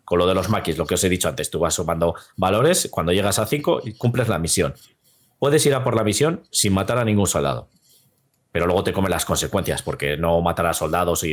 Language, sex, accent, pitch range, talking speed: Spanish, male, Spanish, 85-115 Hz, 245 wpm